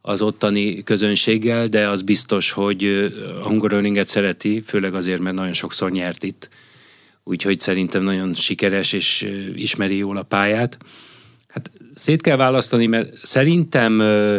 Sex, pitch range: male, 95-105 Hz